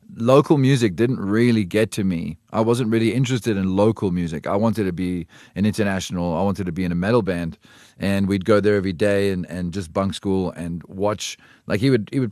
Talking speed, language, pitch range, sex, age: 225 wpm, English, 85-100 Hz, male, 30-49